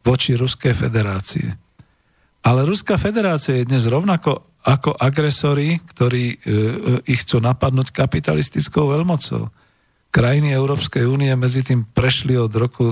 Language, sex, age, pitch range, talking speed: Slovak, male, 40-59, 110-135 Hz, 125 wpm